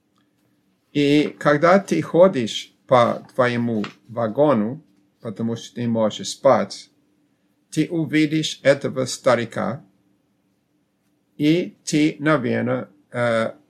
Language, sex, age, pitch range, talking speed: Russian, male, 50-69, 105-150 Hz, 85 wpm